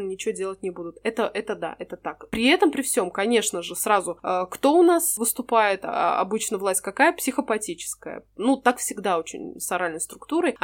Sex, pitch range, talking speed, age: female, 195-240 Hz, 185 wpm, 20-39